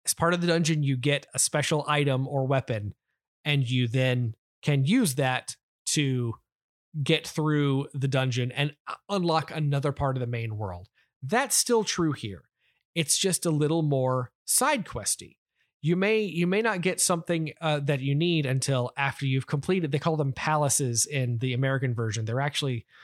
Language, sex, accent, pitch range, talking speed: English, male, American, 130-165 Hz, 175 wpm